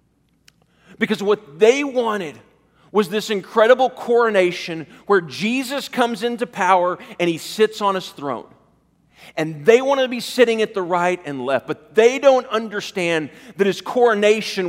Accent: American